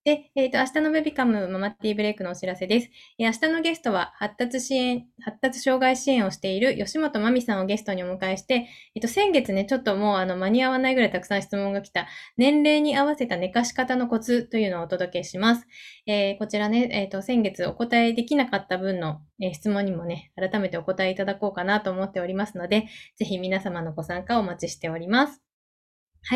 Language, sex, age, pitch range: Japanese, female, 20-39, 190-250 Hz